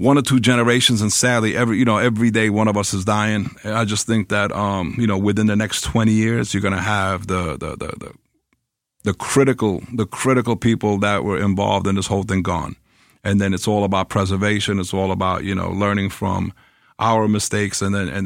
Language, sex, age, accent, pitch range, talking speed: English, male, 50-69, American, 100-120 Hz, 220 wpm